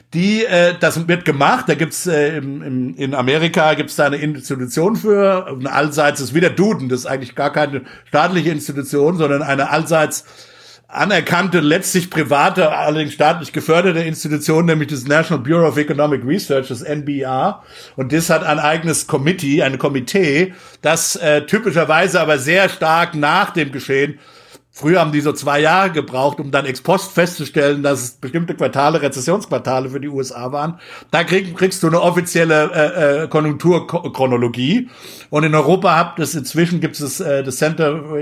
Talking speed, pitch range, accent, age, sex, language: 165 wpm, 140-165 Hz, German, 60-79, male, German